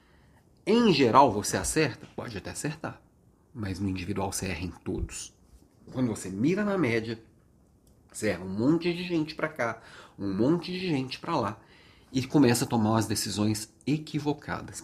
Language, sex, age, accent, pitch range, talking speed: Portuguese, male, 40-59, Brazilian, 105-155 Hz, 160 wpm